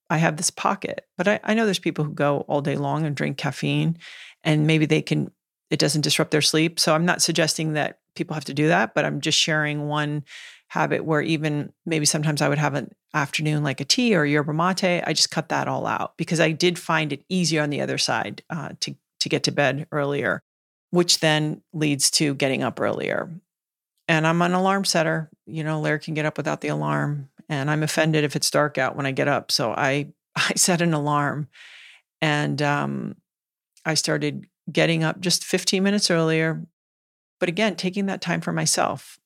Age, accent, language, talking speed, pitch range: 40-59, American, English, 210 wpm, 150-170 Hz